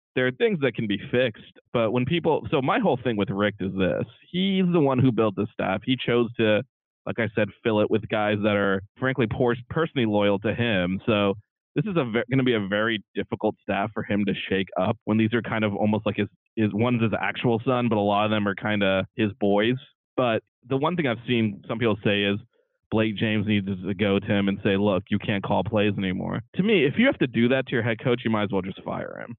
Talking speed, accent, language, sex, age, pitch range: 255 wpm, American, English, male, 20-39, 105-120 Hz